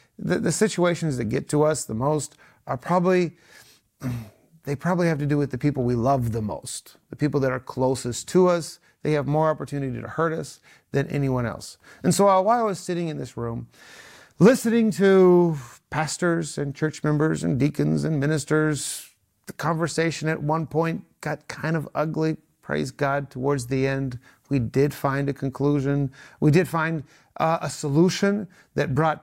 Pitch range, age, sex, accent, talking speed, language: 140-170 Hz, 30-49, male, American, 175 wpm, English